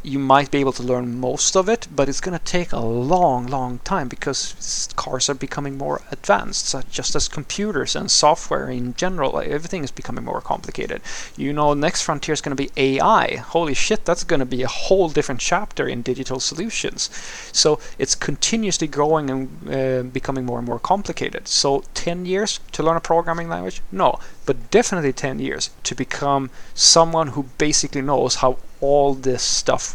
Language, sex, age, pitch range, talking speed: English, male, 30-49, 125-150 Hz, 185 wpm